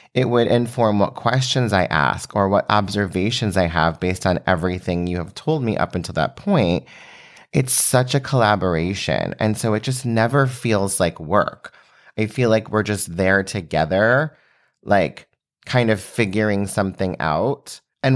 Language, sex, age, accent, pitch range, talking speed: English, male, 30-49, American, 90-125 Hz, 160 wpm